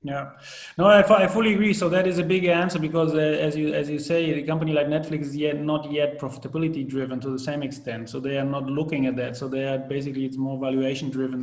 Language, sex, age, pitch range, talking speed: English, male, 30-49, 135-160 Hz, 245 wpm